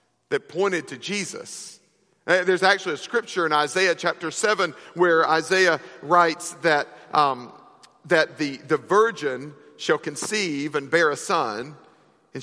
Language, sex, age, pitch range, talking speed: English, male, 50-69, 165-240 Hz, 130 wpm